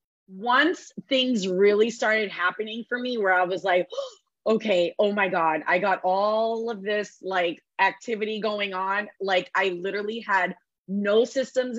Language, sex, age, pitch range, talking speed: English, female, 30-49, 190-245 Hz, 160 wpm